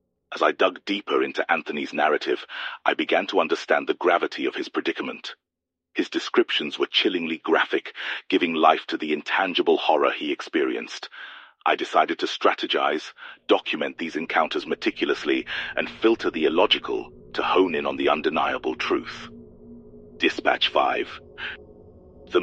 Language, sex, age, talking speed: English, male, 40-59, 135 wpm